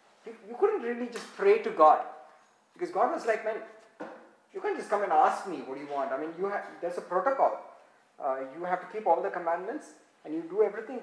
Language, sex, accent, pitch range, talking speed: English, male, Indian, 175-260 Hz, 210 wpm